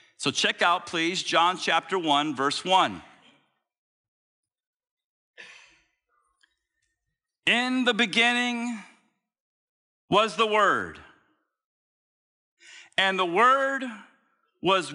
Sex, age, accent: male, 50-69, American